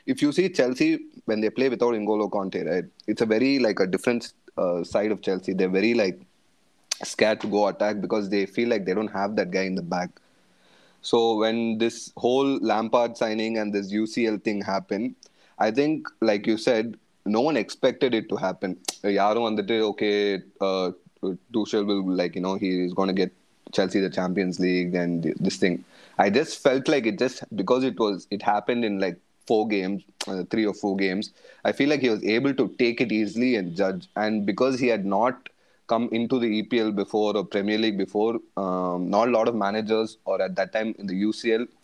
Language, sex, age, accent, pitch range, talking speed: Tamil, male, 20-39, native, 95-115 Hz, 200 wpm